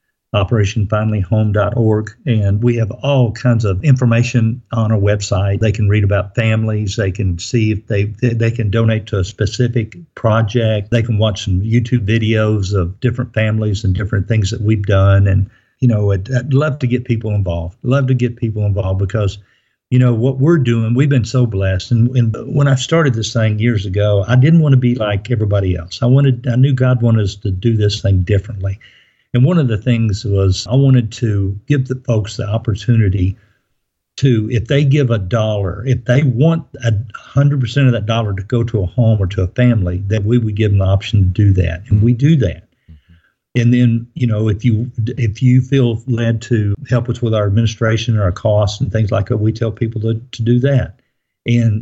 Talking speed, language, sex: 210 wpm, English, male